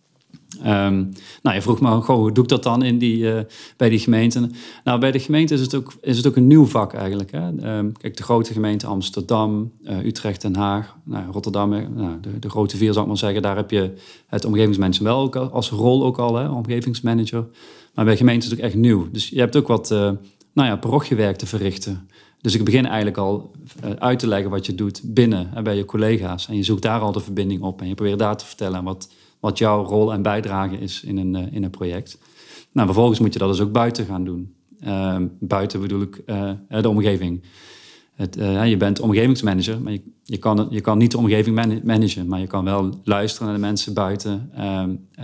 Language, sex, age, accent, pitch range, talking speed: Dutch, male, 40-59, Dutch, 100-115 Hz, 225 wpm